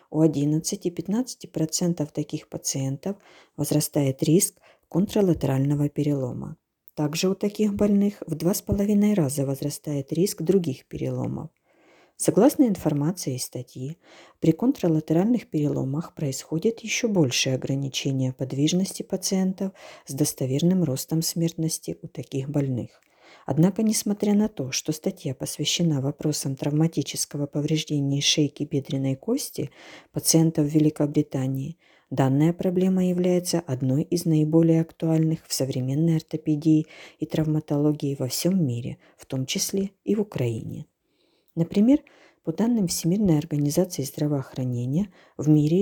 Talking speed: 110 wpm